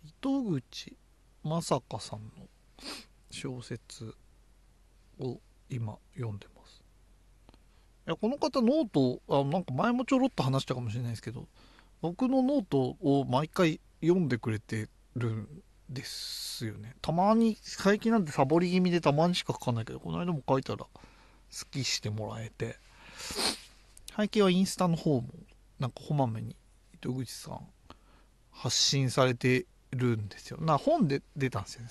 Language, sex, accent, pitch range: Japanese, male, native, 115-165 Hz